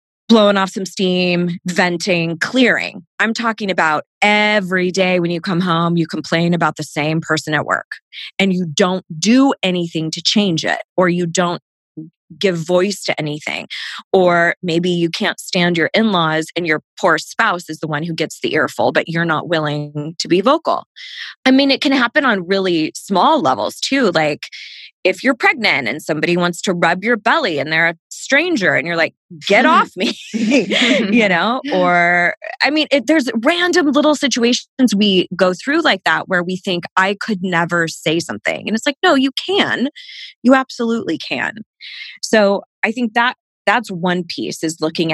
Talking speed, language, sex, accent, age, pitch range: 180 wpm, English, female, American, 20-39, 170-235 Hz